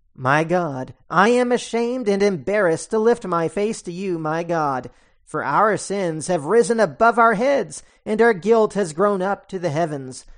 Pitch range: 170-230 Hz